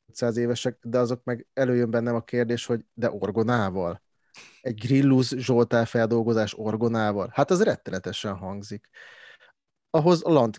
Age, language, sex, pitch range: 30-49, Hungarian, male, 110-130 Hz